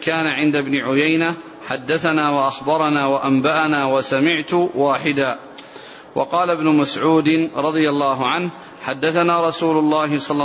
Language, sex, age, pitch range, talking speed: Arabic, male, 40-59, 145-165 Hz, 110 wpm